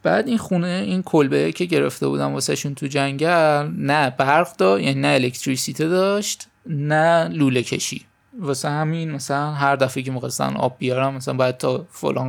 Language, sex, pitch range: Persian, male, 130-155 Hz